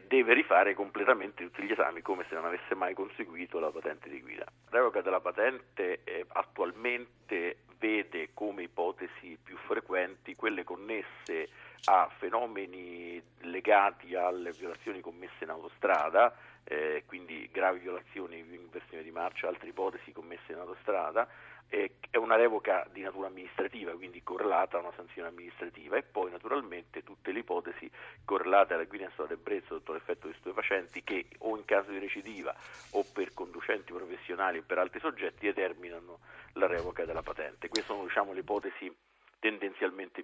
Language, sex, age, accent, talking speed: Italian, male, 50-69, native, 155 wpm